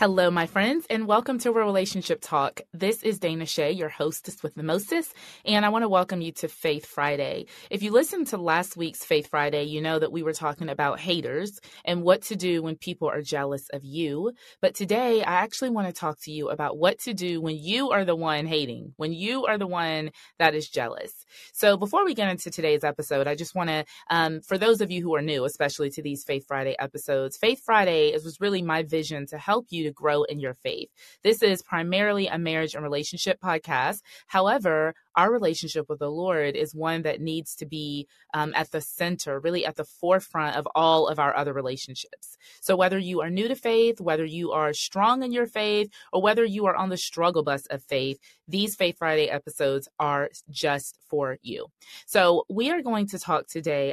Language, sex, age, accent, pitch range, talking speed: English, female, 20-39, American, 150-195 Hz, 210 wpm